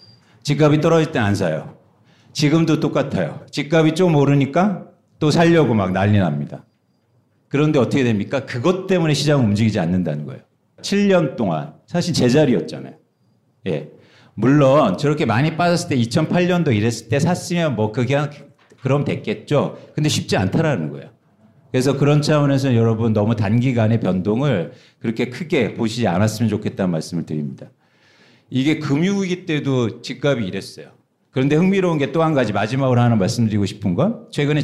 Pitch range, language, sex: 115-150 Hz, Korean, male